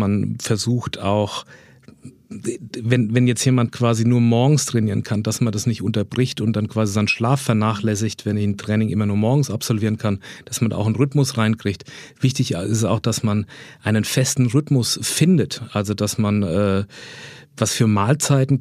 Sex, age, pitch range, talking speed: male, 40-59, 105-125 Hz, 170 wpm